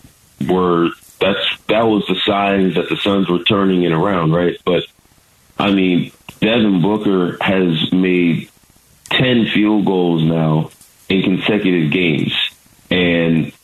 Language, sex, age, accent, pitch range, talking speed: English, male, 30-49, American, 80-95 Hz, 130 wpm